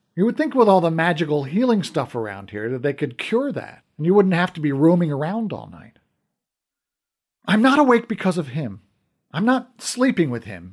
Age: 50-69